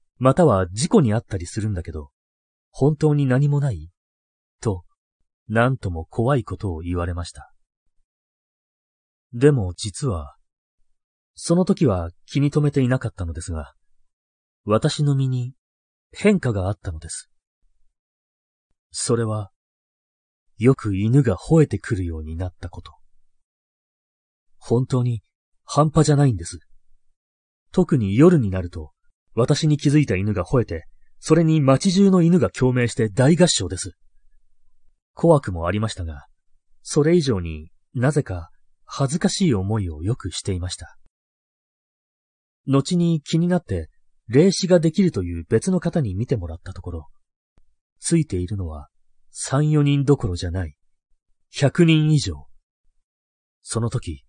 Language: Japanese